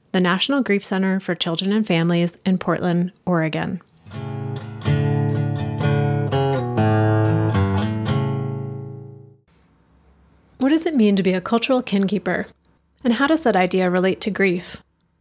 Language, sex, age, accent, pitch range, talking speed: English, female, 30-49, American, 175-220 Hz, 110 wpm